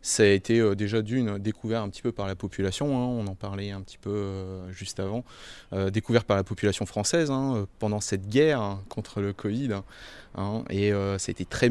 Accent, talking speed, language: French, 220 wpm, French